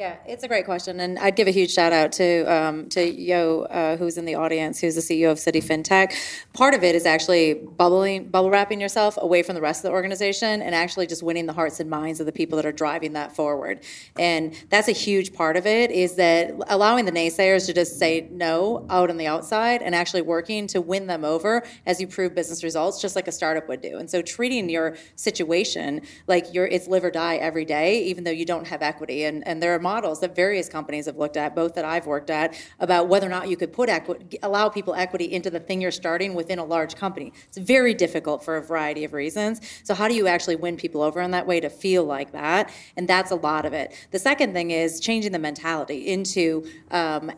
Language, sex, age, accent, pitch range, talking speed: English, female, 30-49, American, 165-195 Hz, 240 wpm